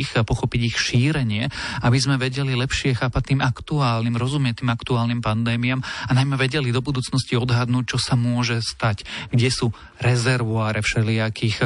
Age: 40-59